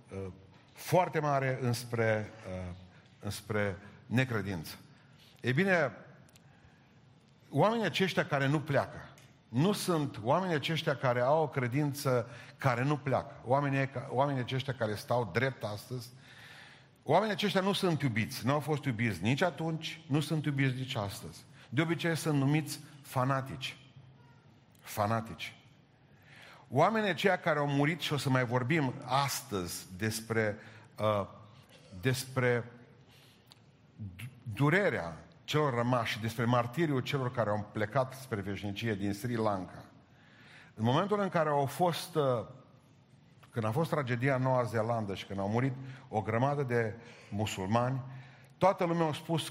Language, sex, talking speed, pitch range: Romanian, male, 130 wpm, 115-150 Hz